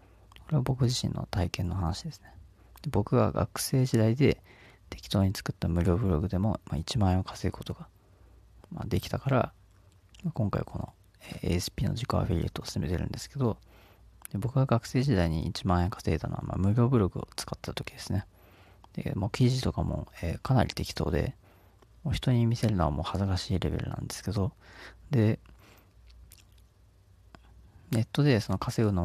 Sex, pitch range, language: male, 90-110 Hz, Japanese